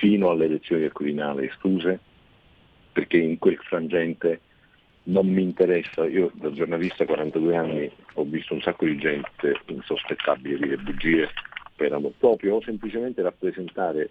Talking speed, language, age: 150 wpm, Italian, 50-69